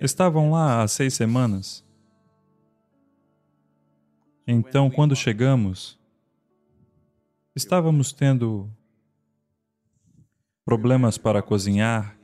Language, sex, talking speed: English, male, 65 wpm